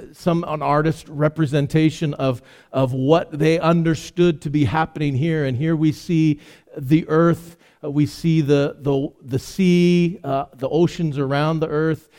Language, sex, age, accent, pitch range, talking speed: English, male, 50-69, American, 145-175 Hz, 160 wpm